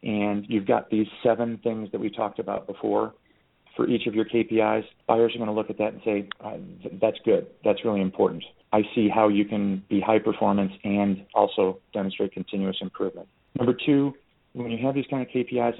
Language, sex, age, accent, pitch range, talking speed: English, male, 40-59, American, 110-125 Hz, 200 wpm